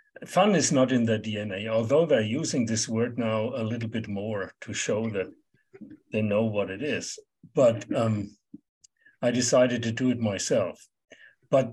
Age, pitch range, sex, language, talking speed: 60-79, 115-145 Hz, male, English, 170 wpm